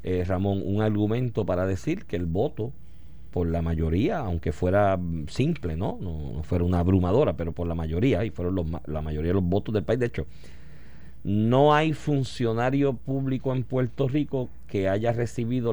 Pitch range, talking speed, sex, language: 90-130 Hz, 180 wpm, male, Spanish